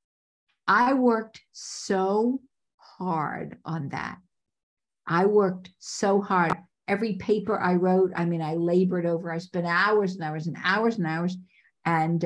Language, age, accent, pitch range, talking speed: English, 50-69, American, 165-205 Hz, 140 wpm